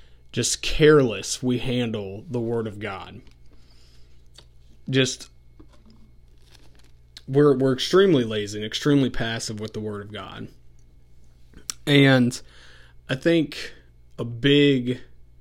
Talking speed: 100 wpm